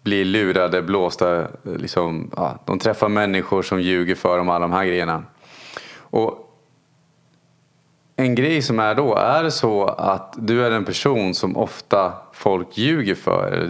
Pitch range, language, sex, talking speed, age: 95-130 Hz, Swedish, male, 160 wpm, 30-49